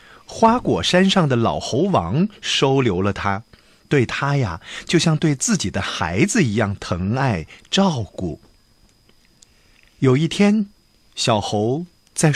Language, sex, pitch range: Chinese, male, 115-175 Hz